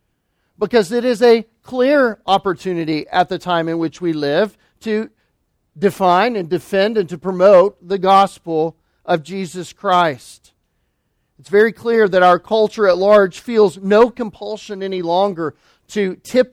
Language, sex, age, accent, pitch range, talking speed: English, male, 40-59, American, 165-210 Hz, 145 wpm